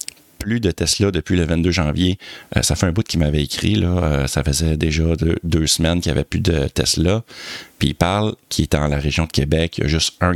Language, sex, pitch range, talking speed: French, male, 80-100 Hz, 255 wpm